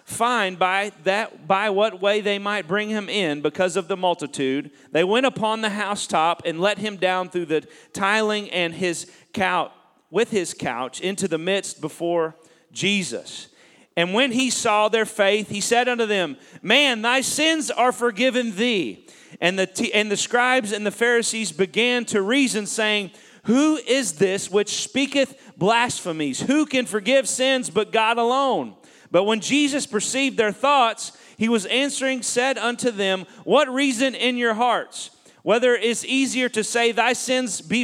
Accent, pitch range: American, 190-245 Hz